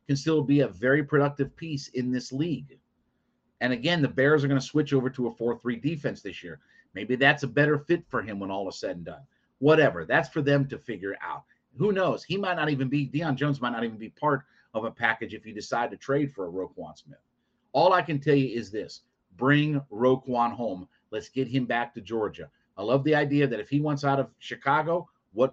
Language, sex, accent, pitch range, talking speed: English, male, American, 125-155 Hz, 230 wpm